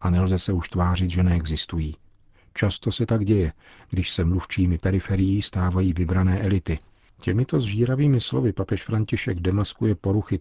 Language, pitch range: Czech, 90-105 Hz